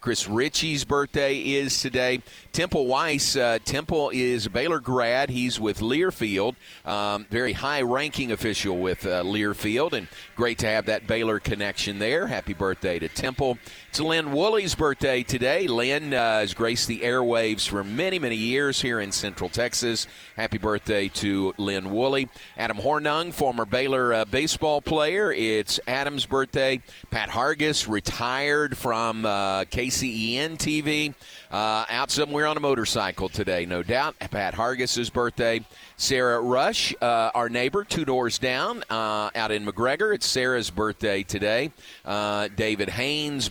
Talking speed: 150 wpm